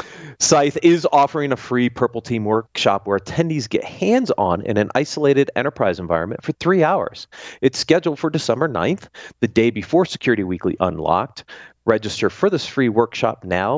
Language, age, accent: English, 40-59, American